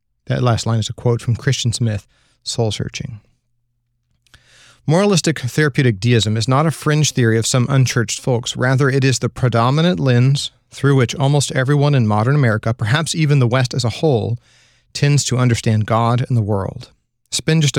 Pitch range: 115-140 Hz